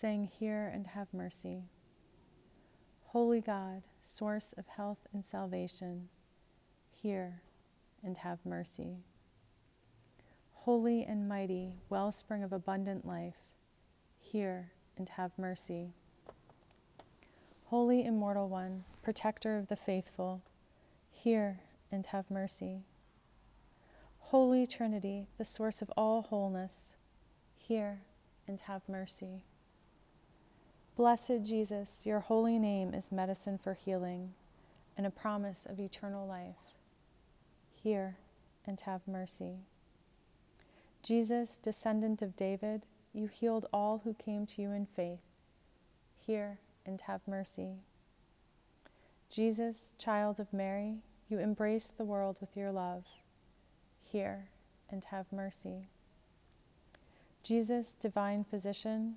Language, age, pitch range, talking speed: English, 30-49, 185-215 Hz, 105 wpm